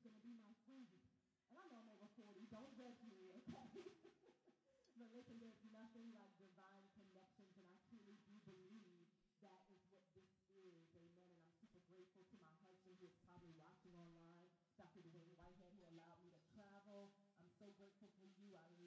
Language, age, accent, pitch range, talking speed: English, 40-59, American, 185-230 Hz, 185 wpm